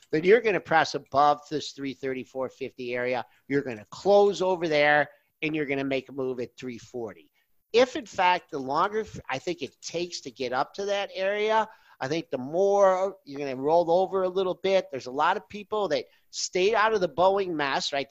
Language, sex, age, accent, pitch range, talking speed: English, male, 50-69, American, 125-180 Hz, 210 wpm